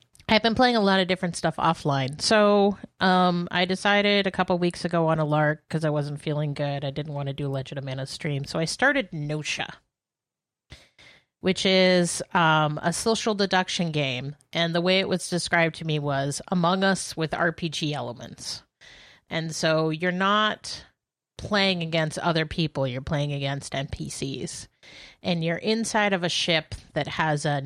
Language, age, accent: English, 30-49, American